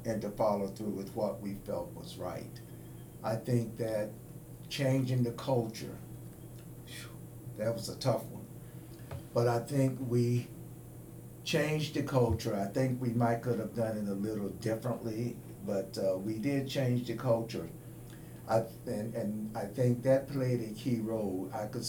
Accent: American